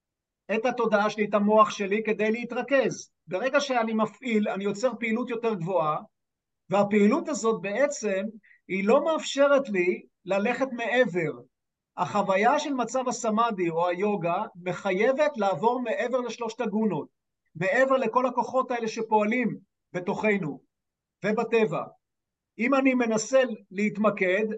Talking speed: 115 wpm